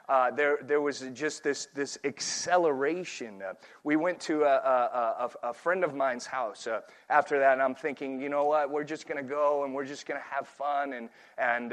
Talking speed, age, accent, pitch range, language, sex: 220 wpm, 30-49, American, 135-165 Hz, English, male